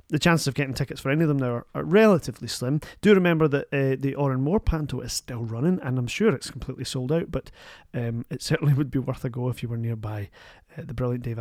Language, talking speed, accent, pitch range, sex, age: English, 260 wpm, British, 125-160 Hz, male, 30-49